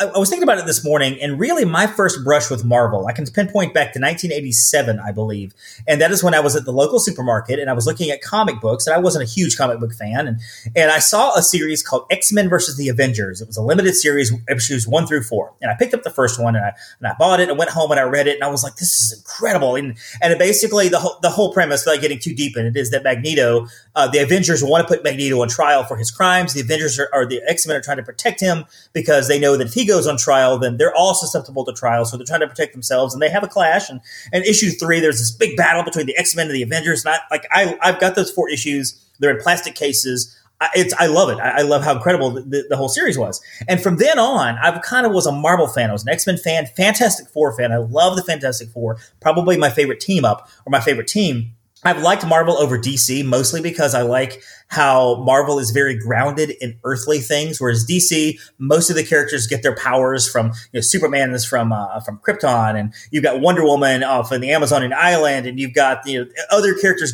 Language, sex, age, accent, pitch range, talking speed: English, male, 30-49, American, 125-170 Hz, 255 wpm